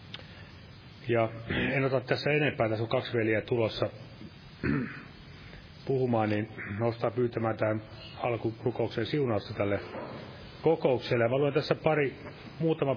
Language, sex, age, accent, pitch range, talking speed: Finnish, male, 30-49, native, 110-135 Hz, 105 wpm